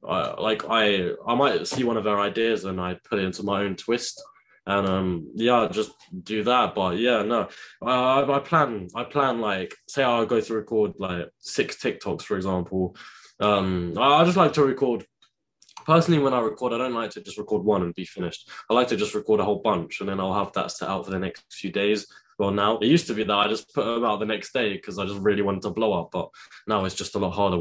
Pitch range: 95-115 Hz